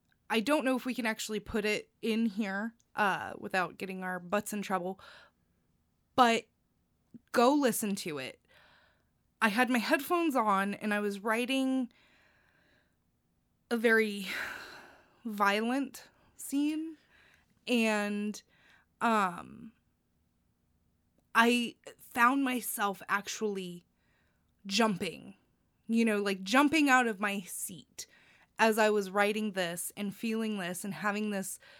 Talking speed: 115 wpm